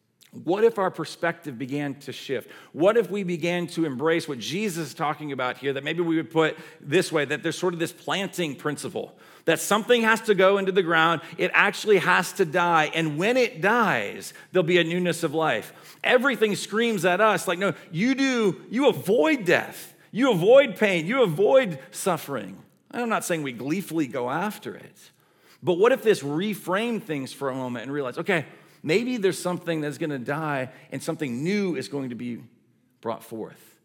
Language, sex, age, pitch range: English, male, 40-59, 150-195 Hz